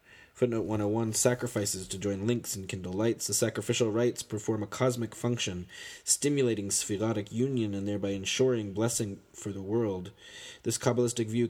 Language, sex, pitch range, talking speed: English, male, 100-115 Hz, 150 wpm